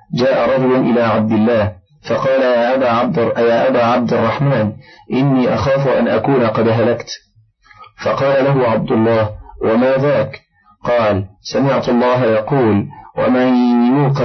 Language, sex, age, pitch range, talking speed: Arabic, male, 40-59, 110-135 Hz, 120 wpm